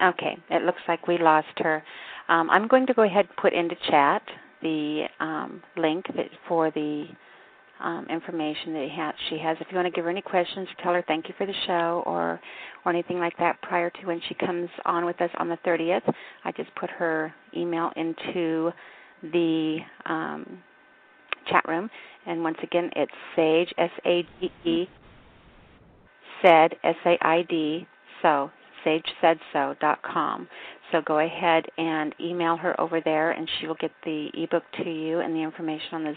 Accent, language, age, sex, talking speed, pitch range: American, English, 40-59, female, 165 wpm, 160-175 Hz